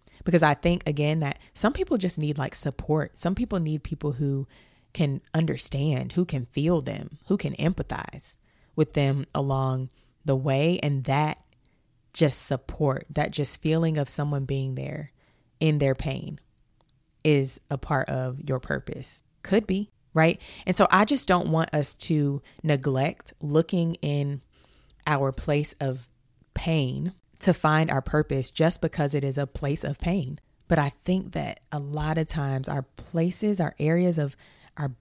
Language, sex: English, female